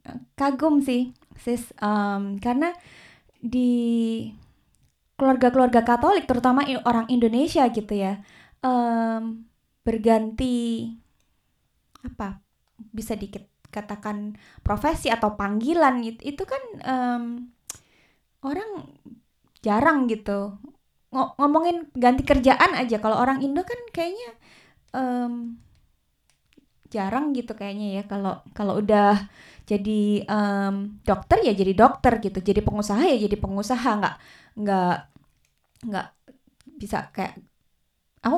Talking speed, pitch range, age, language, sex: 100 wpm, 210-255 Hz, 20-39, Indonesian, female